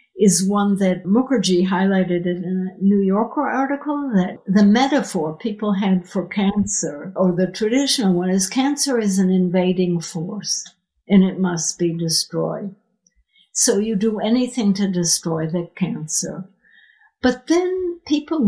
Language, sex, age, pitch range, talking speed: English, female, 60-79, 185-240 Hz, 140 wpm